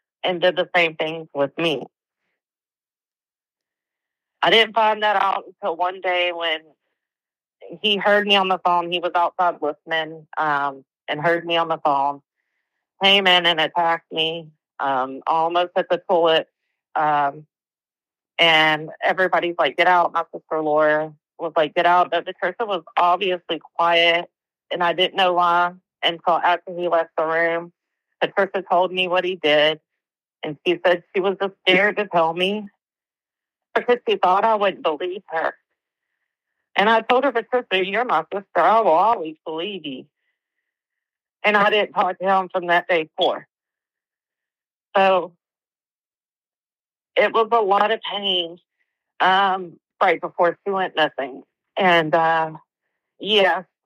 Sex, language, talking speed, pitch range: female, English, 150 wpm, 165-195 Hz